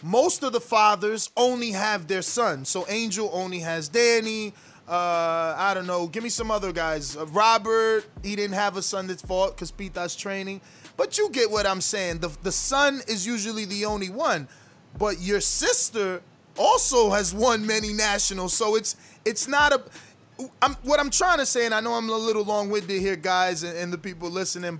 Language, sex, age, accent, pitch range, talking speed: English, male, 20-39, American, 180-230 Hz, 195 wpm